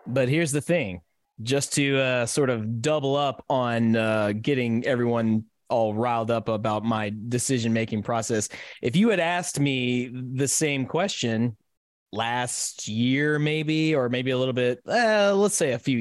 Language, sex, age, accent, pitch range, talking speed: English, male, 30-49, American, 125-160 Hz, 165 wpm